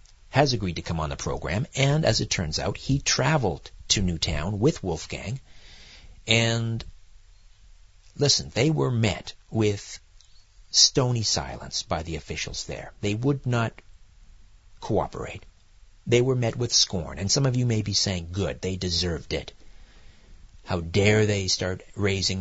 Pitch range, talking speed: 85-110 Hz, 145 wpm